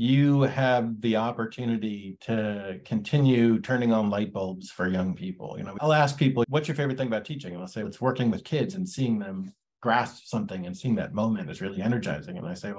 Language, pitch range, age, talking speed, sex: English, 105-140 Hz, 40-59, 215 wpm, male